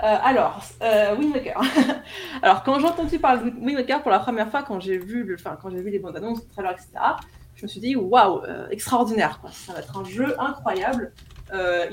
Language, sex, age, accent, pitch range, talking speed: French, female, 20-39, French, 195-255 Hz, 225 wpm